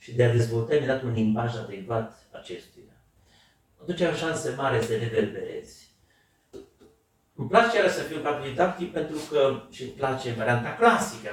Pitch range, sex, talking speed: 115-150 Hz, male, 160 wpm